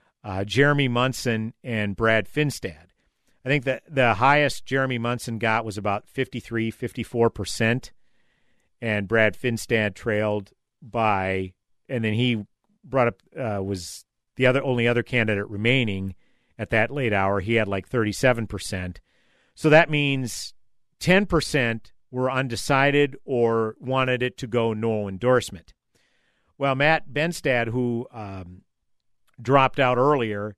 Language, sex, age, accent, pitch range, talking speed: English, male, 50-69, American, 105-130 Hz, 135 wpm